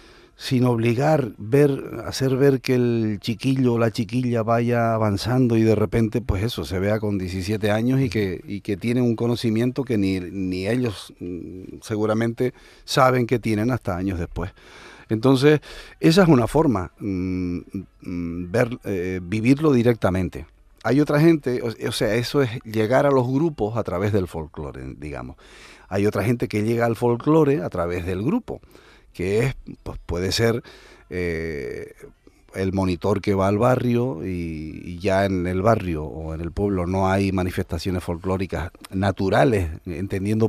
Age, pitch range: 40-59, 95-120 Hz